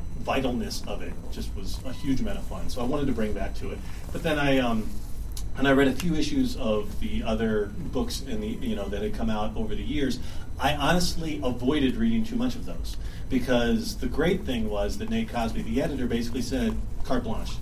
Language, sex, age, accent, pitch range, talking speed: English, male, 40-59, American, 95-120 Hz, 220 wpm